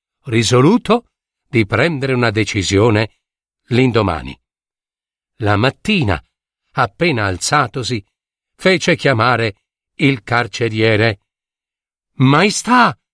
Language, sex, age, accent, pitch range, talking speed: Italian, male, 50-69, native, 125-195 Hz, 70 wpm